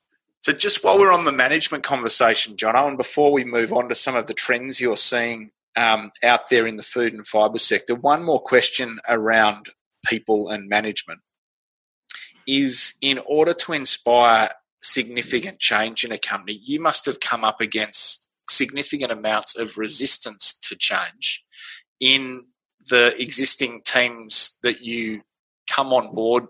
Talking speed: 155 wpm